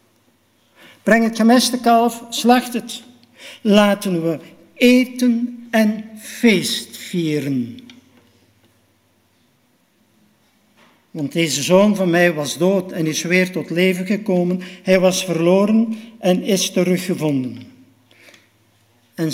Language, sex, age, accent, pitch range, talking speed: Dutch, male, 60-79, Dutch, 125-185 Hz, 95 wpm